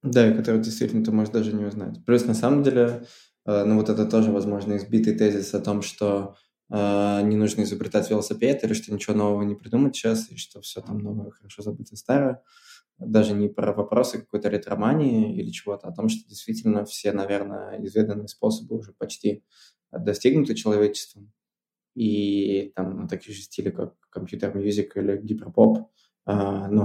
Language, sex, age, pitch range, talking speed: Russian, male, 20-39, 100-110 Hz, 175 wpm